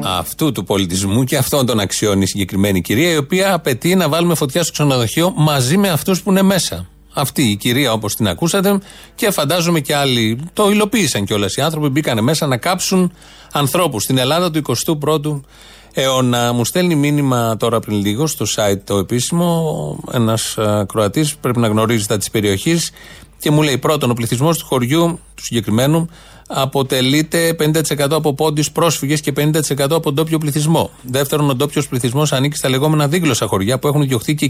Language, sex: Greek, male